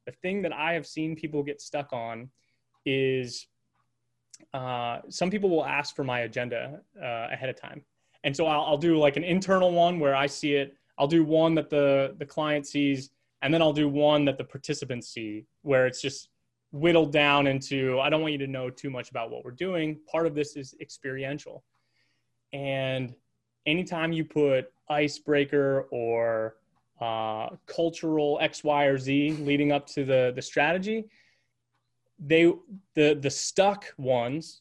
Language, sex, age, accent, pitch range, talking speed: English, male, 20-39, American, 130-165 Hz, 170 wpm